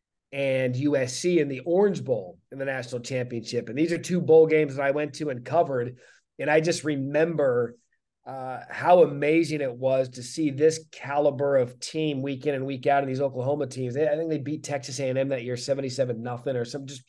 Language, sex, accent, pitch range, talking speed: English, male, American, 130-155 Hz, 210 wpm